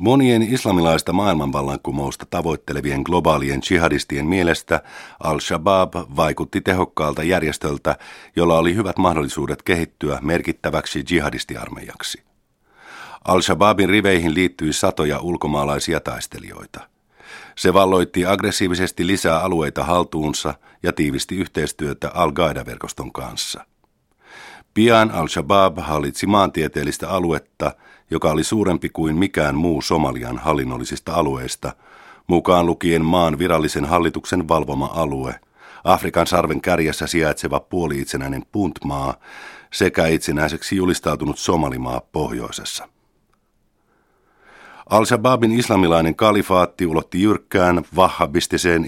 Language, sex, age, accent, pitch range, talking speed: Finnish, male, 50-69, native, 75-95 Hz, 90 wpm